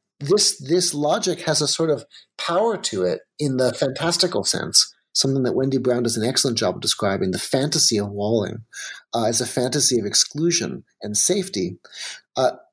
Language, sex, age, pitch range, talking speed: English, male, 30-49, 120-175 Hz, 175 wpm